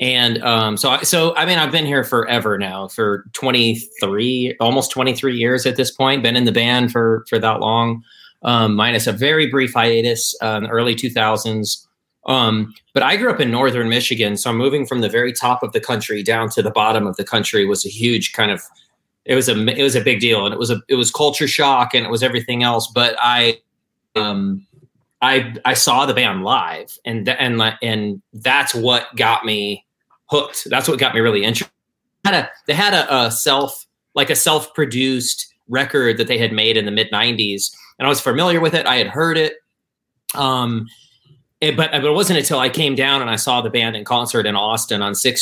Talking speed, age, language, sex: 215 wpm, 30-49, English, male